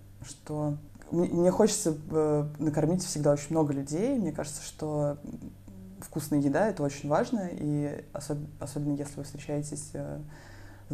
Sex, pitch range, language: female, 140-150 Hz, Russian